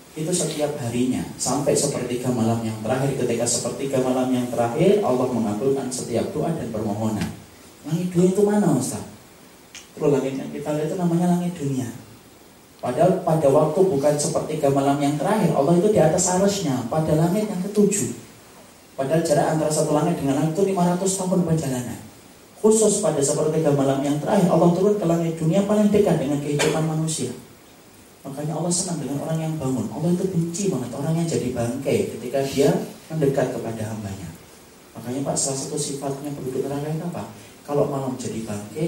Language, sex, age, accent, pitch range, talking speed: Indonesian, male, 30-49, native, 125-170 Hz, 165 wpm